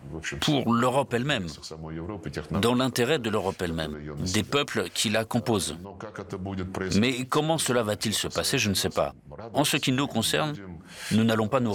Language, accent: French, French